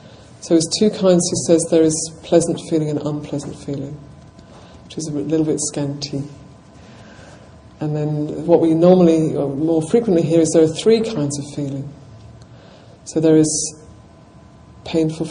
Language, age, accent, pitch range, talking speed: English, 50-69, British, 145-165 Hz, 155 wpm